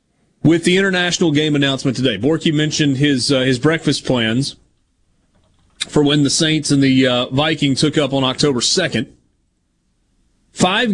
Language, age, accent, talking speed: English, 40-59, American, 150 wpm